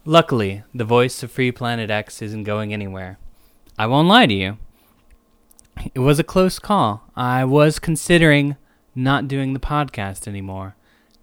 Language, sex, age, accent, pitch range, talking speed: English, male, 20-39, American, 100-125 Hz, 150 wpm